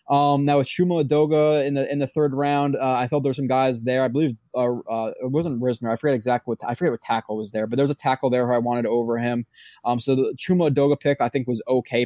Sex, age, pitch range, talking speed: male, 20-39, 115-135 Hz, 270 wpm